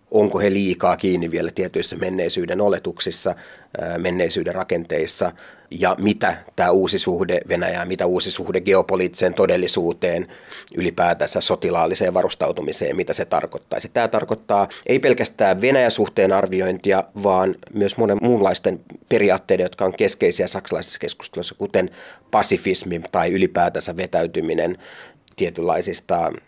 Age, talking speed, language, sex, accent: 30-49, 115 wpm, Finnish, male, native